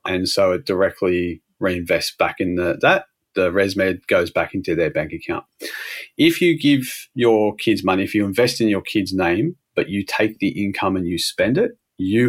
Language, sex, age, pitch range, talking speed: English, male, 30-49, 90-115 Hz, 195 wpm